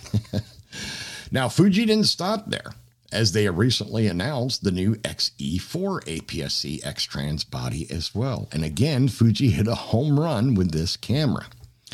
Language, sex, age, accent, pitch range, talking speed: English, male, 60-79, American, 90-120 Hz, 140 wpm